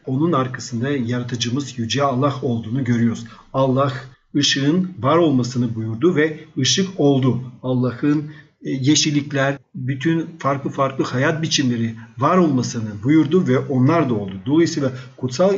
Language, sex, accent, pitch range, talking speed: Turkish, male, native, 125-165 Hz, 120 wpm